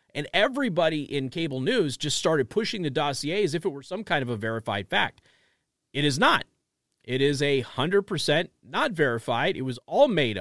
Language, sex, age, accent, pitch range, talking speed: English, male, 40-59, American, 125-160 Hz, 185 wpm